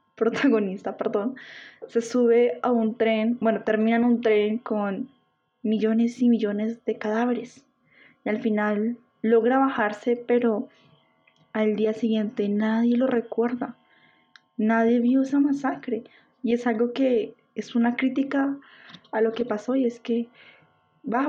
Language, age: Spanish, 10-29